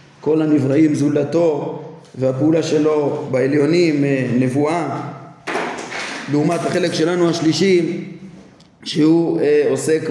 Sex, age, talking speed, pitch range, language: male, 20-39, 75 wpm, 140-160 Hz, Hebrew